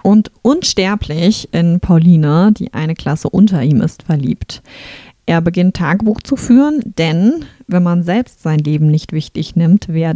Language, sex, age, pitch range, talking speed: German, female, 30-49, 170-220 Hz, 155 wpm